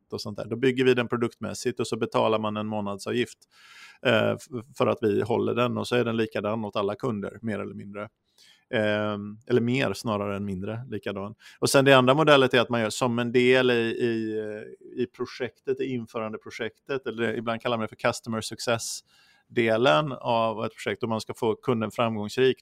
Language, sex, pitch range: Swedish, male, 105-120 Hz